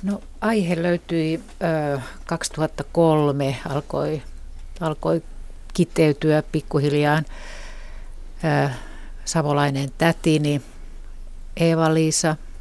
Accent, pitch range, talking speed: native, 150-170 Hz, 60 wpm